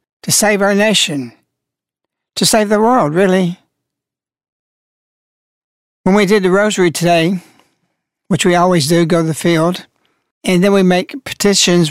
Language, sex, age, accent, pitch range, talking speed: English, male, 60-79, American, 170-220 Hz, 140 wpm